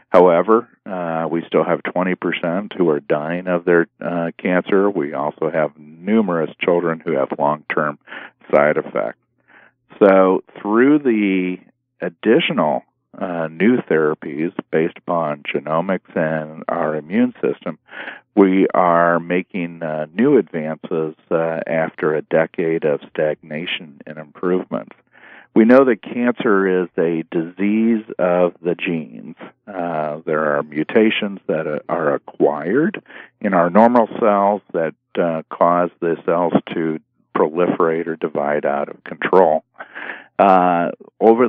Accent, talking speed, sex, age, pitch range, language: American, 125 wpm, male, 50-69, 85-100 Hz, English